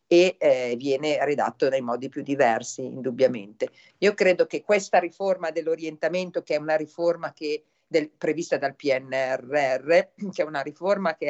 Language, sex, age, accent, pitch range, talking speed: Italian, female, 50-69, native, 135-170 Hz, 145 wpm